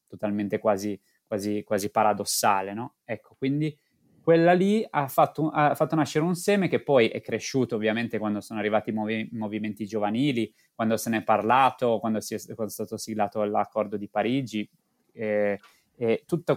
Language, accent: Italian, native